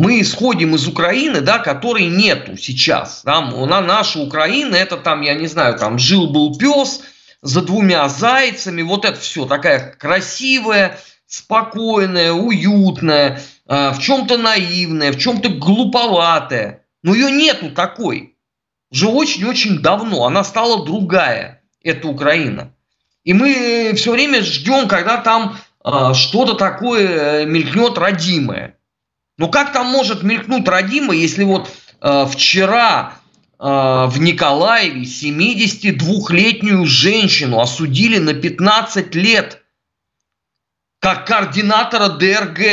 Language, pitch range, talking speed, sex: Russian, 165-225 Hz, 115 wpm, male